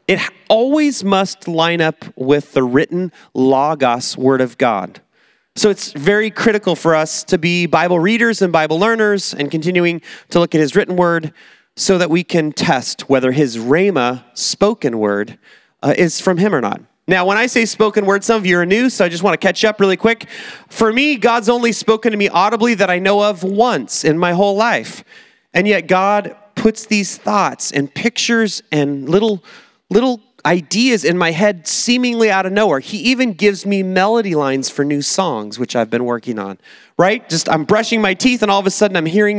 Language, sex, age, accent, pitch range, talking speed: English, male, 30-49, American, 155-220 Hz, 200 wpm